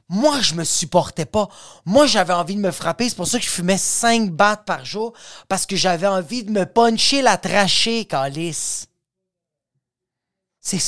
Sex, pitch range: male, 175-215 Hz